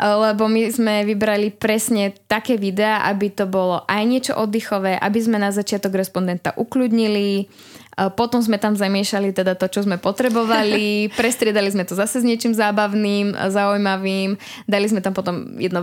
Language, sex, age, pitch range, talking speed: Slovak, female, 20-39, 185-210 Hz, 155 wpm